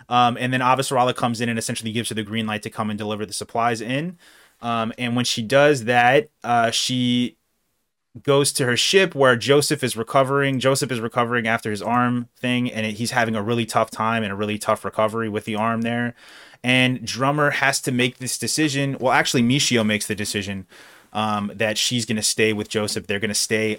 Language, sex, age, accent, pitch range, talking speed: English, male, 20-39, American, 105-125 Hz, 210 wpm